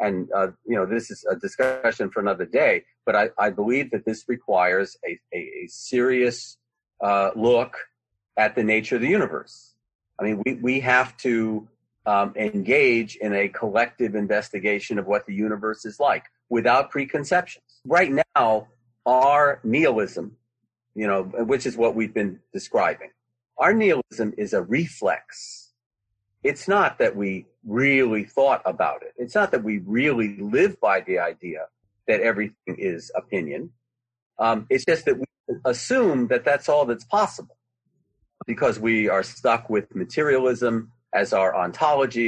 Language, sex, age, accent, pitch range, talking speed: English, male, 40-59, American, 105-125 Hz, 155 wpm